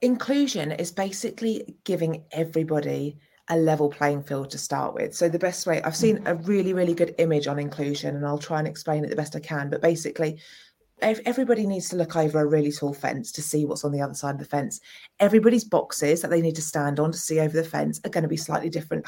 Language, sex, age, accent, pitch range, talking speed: English, female, 30-49, British, 150-180 Hz, 235 wpm